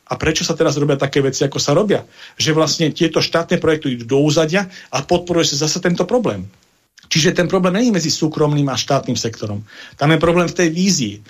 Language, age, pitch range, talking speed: Slovak, 40-59, 130-165 Hz, 200 wpm